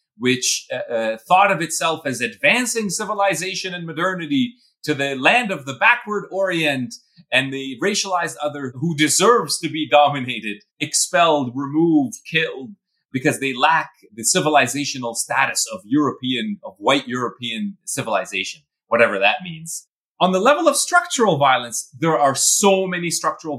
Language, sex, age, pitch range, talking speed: English, male, 30-49, 130-195 Hz, 140 wpm